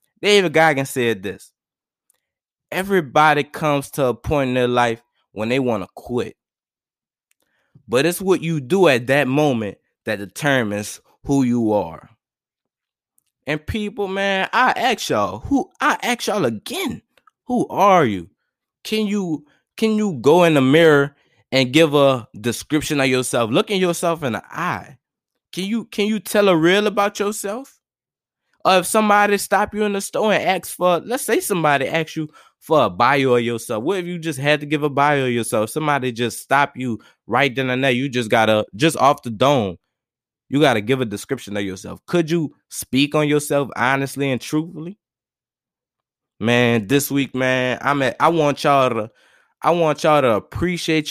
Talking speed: 175 wpm